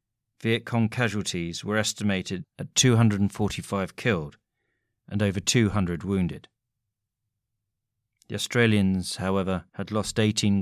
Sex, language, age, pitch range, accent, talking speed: male, English, 40-59, 95-120 Hz, British, 100 wpm